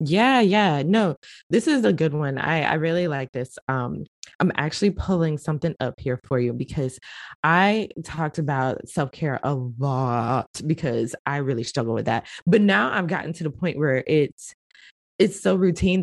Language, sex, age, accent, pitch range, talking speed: English, female, 20-39, American, 145-210 Hz, 175 wpm